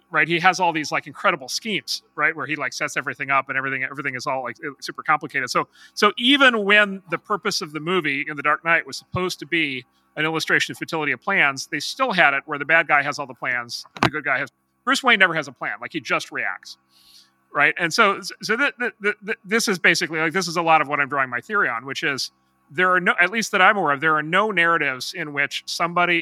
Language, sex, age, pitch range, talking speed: English, male, 40-59, 140-185 Hz, 260 wpm